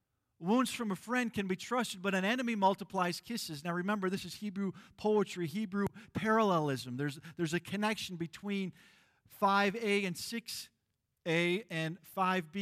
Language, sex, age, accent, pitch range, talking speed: English, male, 50-69, American, 150-220 Hz, 145 wpm